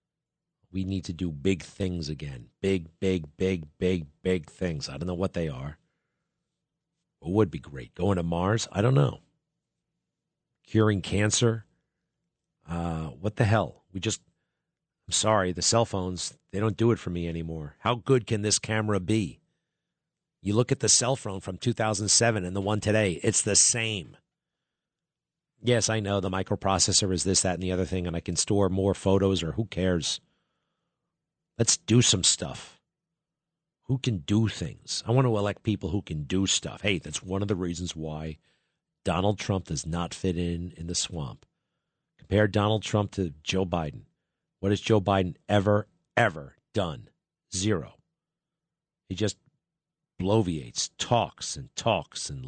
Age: 40-59